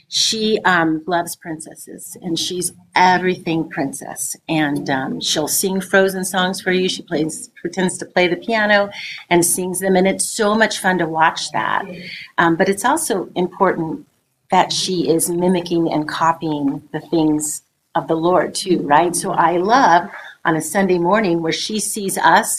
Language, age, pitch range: English, 40-59, 160-205 Hz